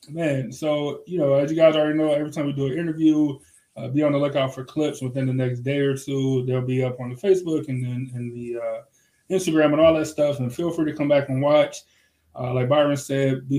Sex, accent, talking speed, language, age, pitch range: male, American, 250 wpm, English, 20-39, 125-150 Hz